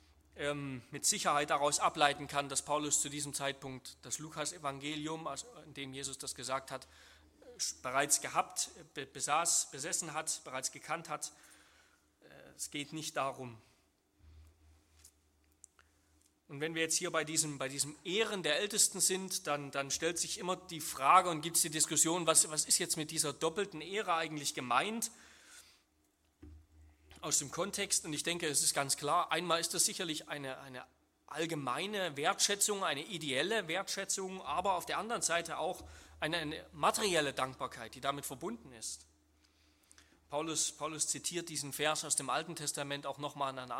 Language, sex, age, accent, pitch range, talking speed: German, male, 30-49, German, 130-170 Hz, 155 wpm